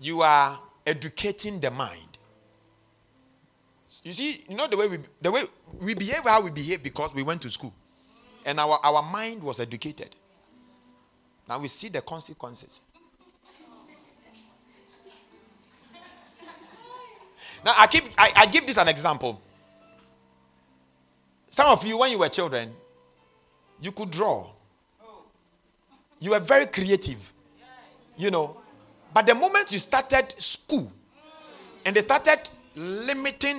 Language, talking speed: English, 125 wpm